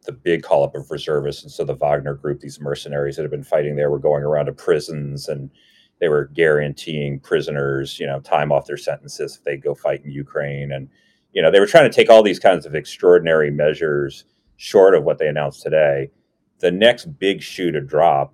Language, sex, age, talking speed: English, male, 30-49, 215 wpm